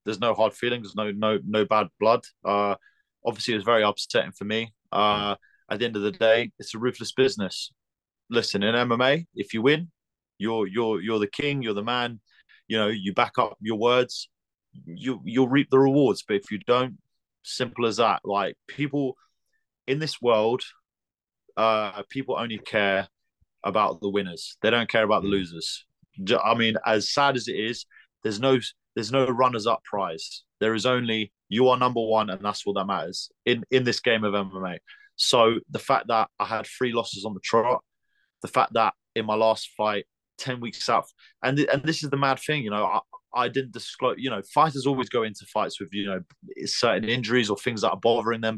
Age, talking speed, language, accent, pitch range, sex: 30-49, 205 wpm, English, British, 105-130 Hz, male